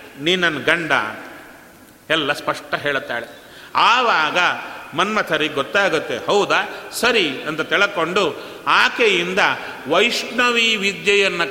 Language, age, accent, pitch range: Kannada, 40-59, native, 150-200 Hz